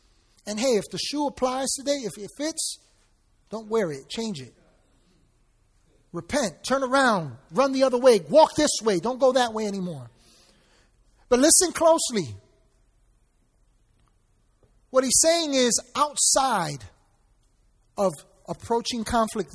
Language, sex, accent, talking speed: English, male, American, 125 wpm